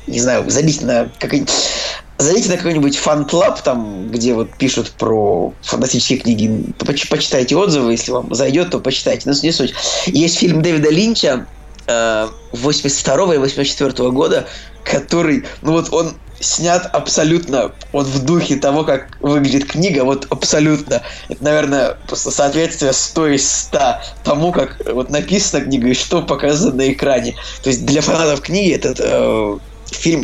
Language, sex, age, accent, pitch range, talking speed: Russian, male, 20-39, native, 125-155 Hz, 135 wpm